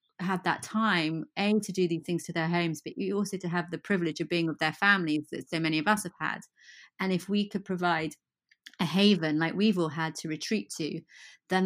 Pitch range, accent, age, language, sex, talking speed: 160-180 Hz, British, 30-49, English, female, 230 wpm